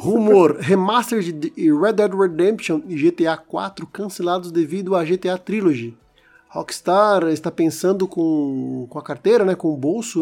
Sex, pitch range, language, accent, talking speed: male, 165-210 Hz, Portuguese, Brazilian, 145 wpm